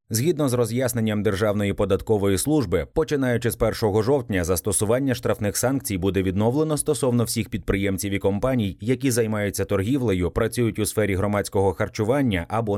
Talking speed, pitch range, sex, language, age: 135 wpm, 100-130 Hz, male, Ukrainian, 30-49